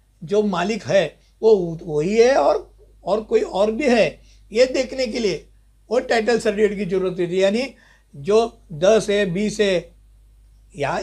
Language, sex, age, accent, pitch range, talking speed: Hindi, male, 60-79, native, 170-225 Hz, 165 wpm